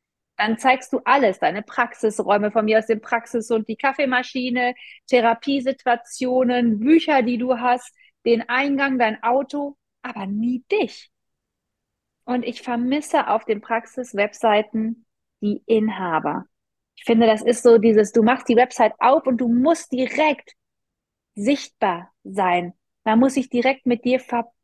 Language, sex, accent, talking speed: German, female, German, 145 wpm